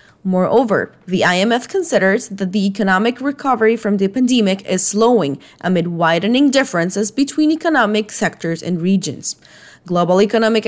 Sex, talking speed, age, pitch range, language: female, 130 wpm, 20-39, 180-235 Hz, English